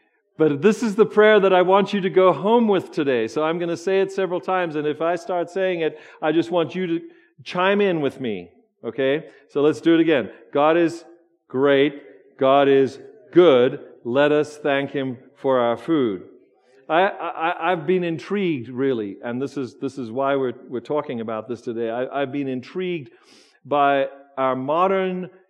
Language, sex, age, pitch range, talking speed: English, male, 50-69, 130-195 Hz, 190 wpm